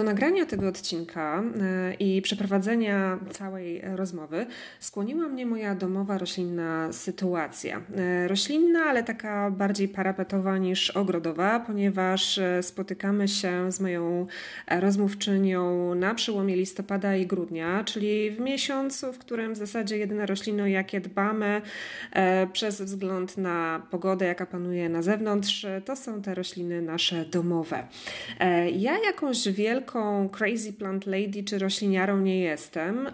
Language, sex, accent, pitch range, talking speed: Polish, female, native, 180-210 Hz, 120 wpm